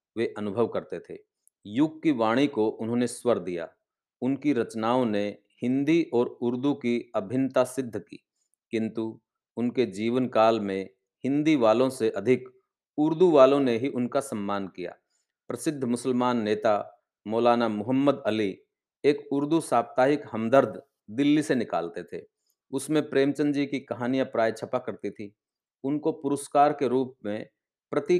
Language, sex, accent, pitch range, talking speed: Hindi, male, native, 115-140 Hz, 140 wpm